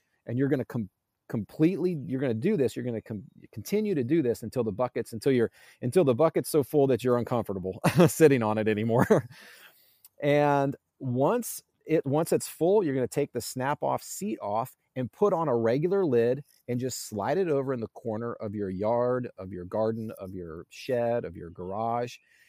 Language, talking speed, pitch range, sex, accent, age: English, 205 wpm, 105-135 Hz, male, American, 30-49